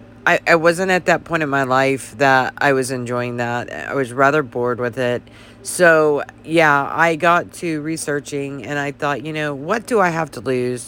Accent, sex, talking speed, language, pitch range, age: American, female, 205 wpm, English, 125-150 Hz, 40-59